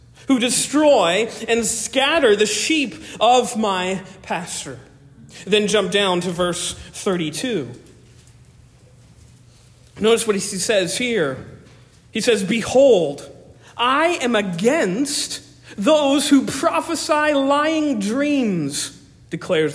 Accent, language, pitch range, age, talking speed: American, English, 175-245 Hz, 40-59, 95 wpm